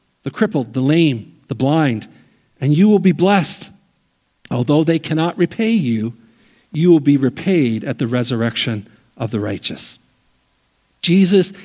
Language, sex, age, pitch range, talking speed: English, male, 50-69, 125-195 Hz, 140 wpm